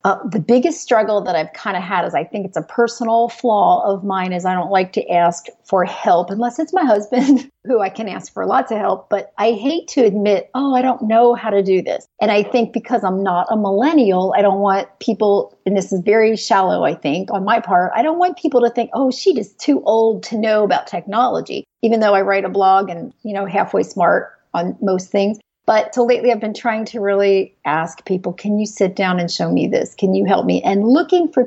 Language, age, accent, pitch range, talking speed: English, 40-59, American, 195-245 Hz, 240 wpm